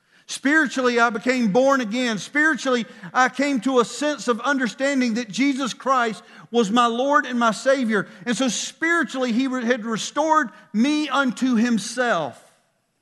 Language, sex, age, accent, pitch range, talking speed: English, male, 50-69, American, 215-255 Hz, 145 wpm